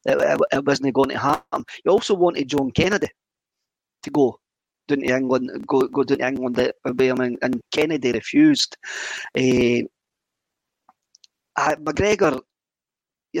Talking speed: 110 wpm